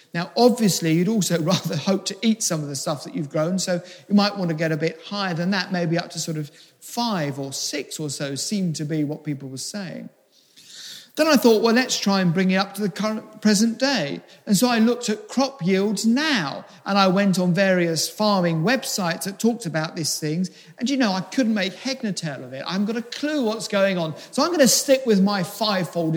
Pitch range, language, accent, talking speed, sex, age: 160-230 Hz, English, British, 235 wpm, male, 50-69